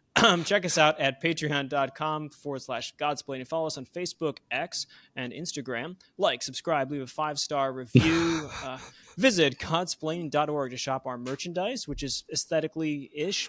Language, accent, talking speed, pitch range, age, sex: English, American, 140 wpm, 130-160 Hz, 20-39, male